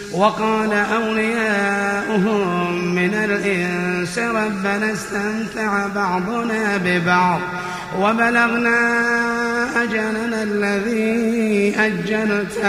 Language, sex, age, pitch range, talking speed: Arabic, male, 30-49, 200-225 Hz, 55 wpm